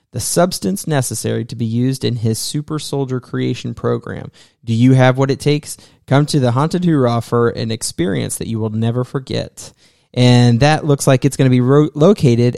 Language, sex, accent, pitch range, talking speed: English, male, American, 120-145 Hz, 190 wpm